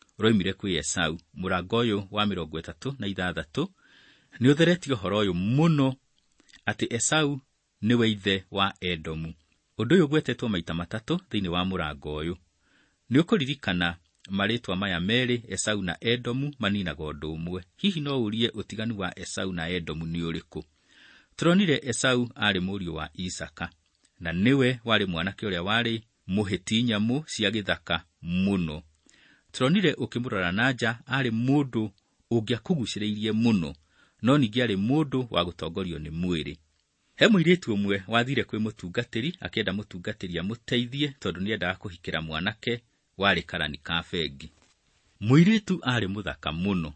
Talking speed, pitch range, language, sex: 125 wpm, 85-120 Hz, English, male